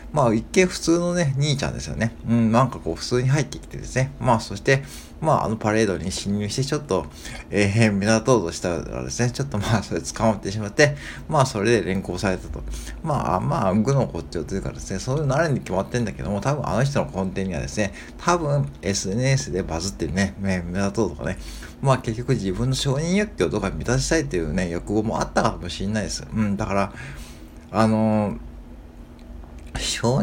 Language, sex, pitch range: Japanese, male, 95-130 Hz